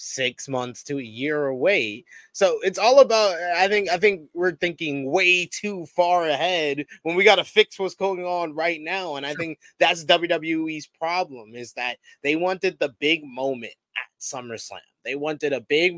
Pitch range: 140-185 Hz